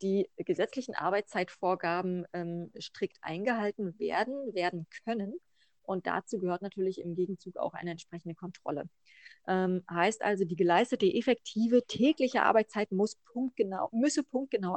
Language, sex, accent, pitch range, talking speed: German, female, German, 185-225 Hz, 125 wpm